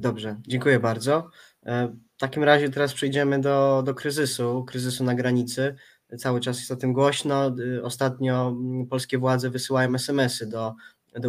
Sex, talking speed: male, 145 wpm